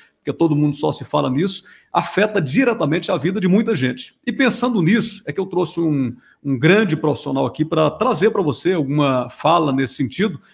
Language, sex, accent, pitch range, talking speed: English, male, Brazilian, 140-185 Hz, 195 wpm